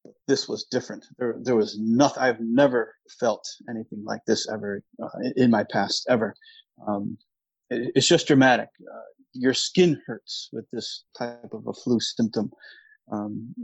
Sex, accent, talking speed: male, American, 160 wpm